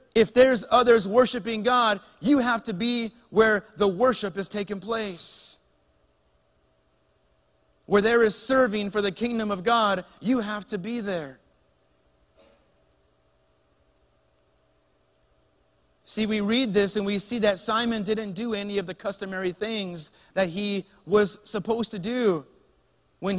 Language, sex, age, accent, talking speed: English, male, 30-49, American, 135 wpm